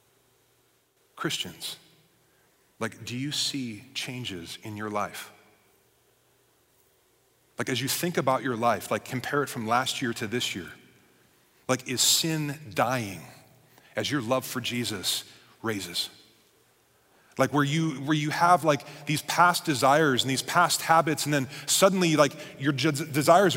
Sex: male